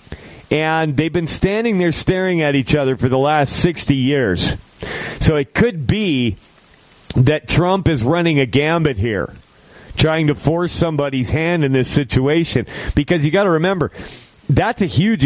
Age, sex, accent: 40-59, male, American